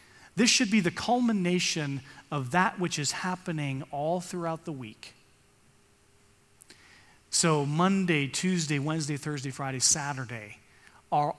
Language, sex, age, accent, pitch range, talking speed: English, male, 40-59, American, 135-180 Hz, 115 wpm